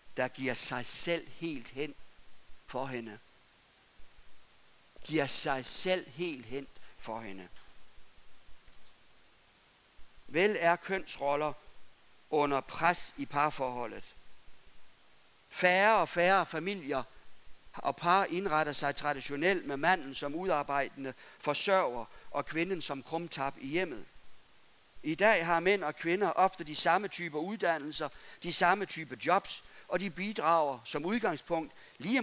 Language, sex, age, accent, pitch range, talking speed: Danish, male, 60-79, native, 140-190 Hz, 115 wpm